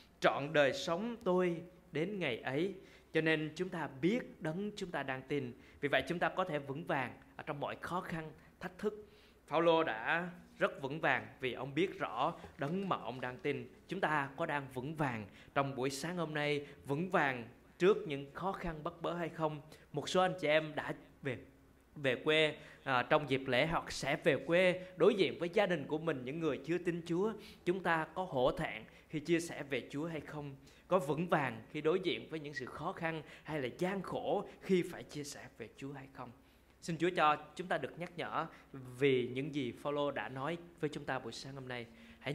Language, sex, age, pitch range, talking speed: Vietnamese, male, 20-39, 135-175 Hz, 215 wpm